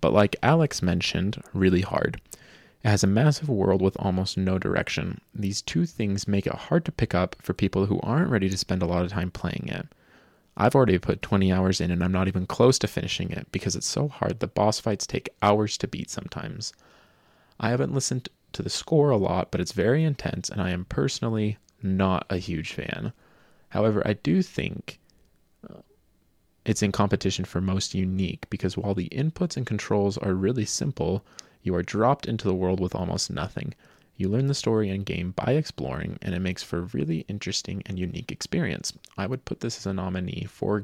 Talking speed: 200 wpm